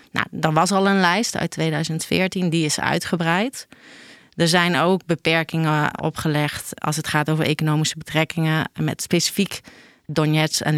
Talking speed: 145 wpm